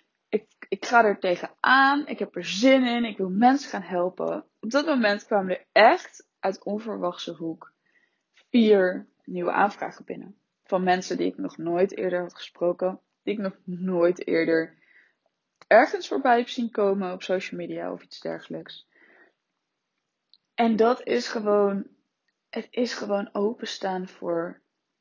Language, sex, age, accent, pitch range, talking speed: Dutch, female, 20-39, Dutch, 185-235 Hz, 150 wpm